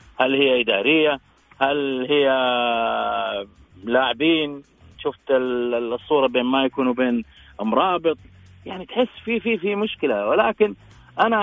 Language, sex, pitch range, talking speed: Arabic, male, 135-180 Hz, 105 wpm